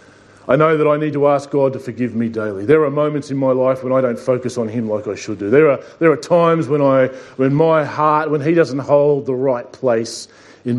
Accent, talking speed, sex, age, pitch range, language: Australian, 255 wpm, male, 40-59, 120-175 Hz, English